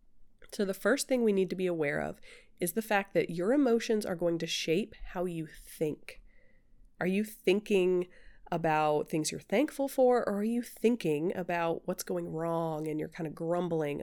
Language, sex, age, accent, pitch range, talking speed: English, female, 30-49, American, 165-220 Hz, 190 wpm